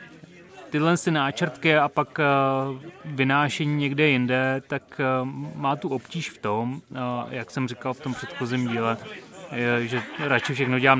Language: Czech